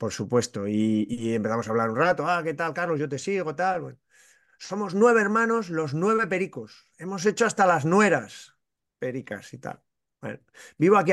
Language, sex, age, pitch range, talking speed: Spanish, male, 30-49, 125-200 Hz, 180 wpm